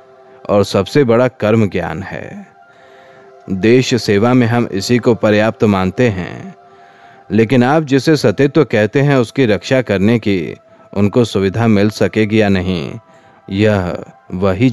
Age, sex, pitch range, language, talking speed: 30-49, male, 100-130 Hz, Hindi, 145 wpm